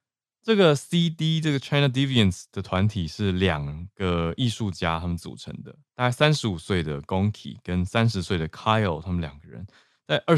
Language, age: Chinese, 20-39